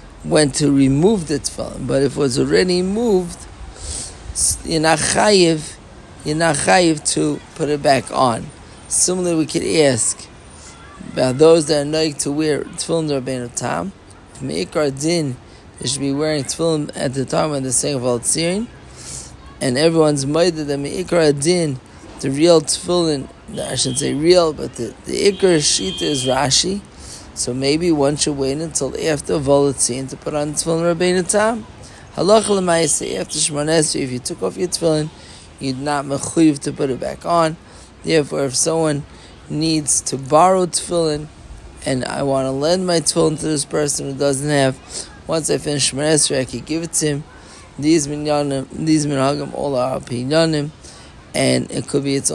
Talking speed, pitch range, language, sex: 150 wpm, 130-160 Hz, English, male